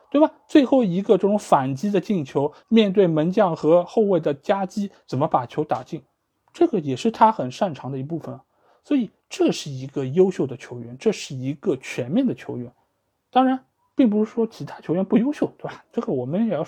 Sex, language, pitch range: male, Chinese, 150-225 Hz